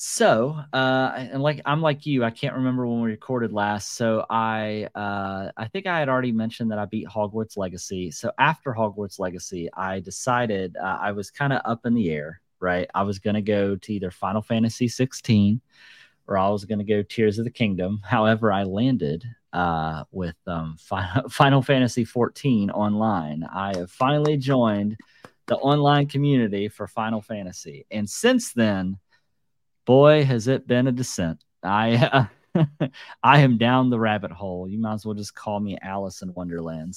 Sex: male